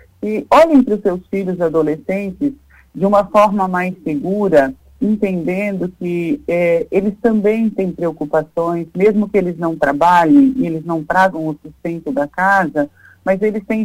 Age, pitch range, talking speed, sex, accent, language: 50-69, 160-200 Hz, 145 wpm, male, Brazilian, Portuguese